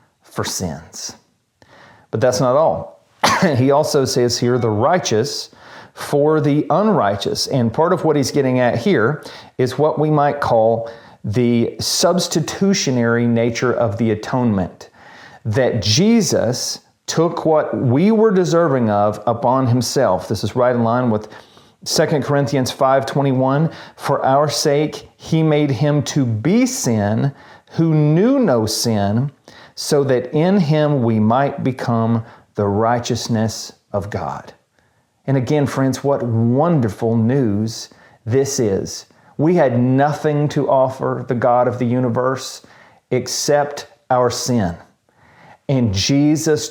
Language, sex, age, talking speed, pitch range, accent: English, male, 40-59, 130 wpm, 120-155 Hz, American